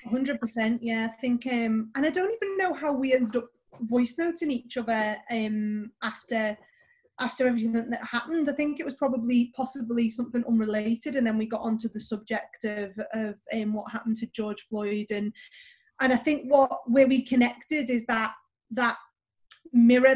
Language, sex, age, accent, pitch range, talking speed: English, female, 20-39, British, 220-260 Hz, 175 wpm